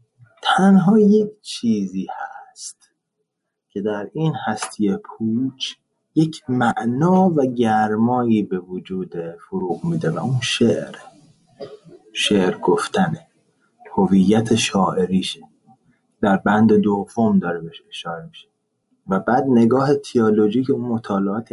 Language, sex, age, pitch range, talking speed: Persian, male, 30-49, 105-155 Hz, 105 wpm